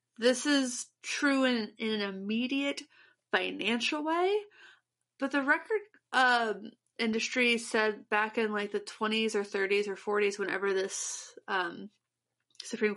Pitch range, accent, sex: 195-280 Hz, American, female